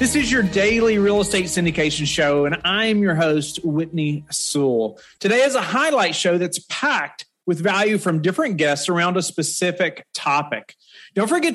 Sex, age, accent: male, 30-49, American